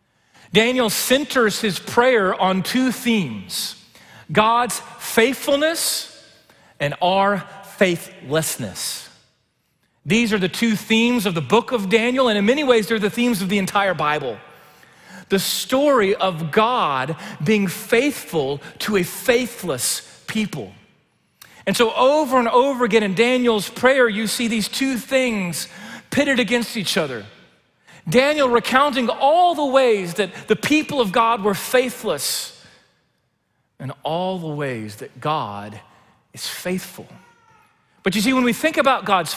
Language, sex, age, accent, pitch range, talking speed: English, male, 40-59, American, 160-240 Hz, 135 wpm